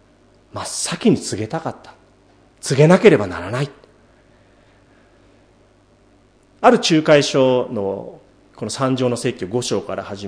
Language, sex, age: Japanese, male, 40-59